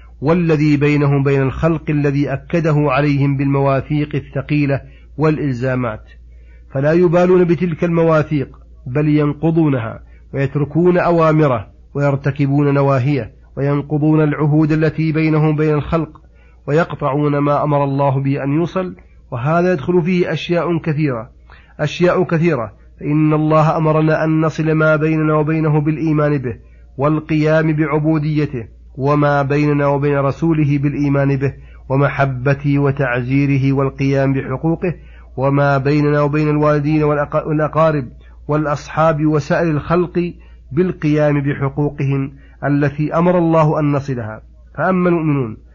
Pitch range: 140-155 Hz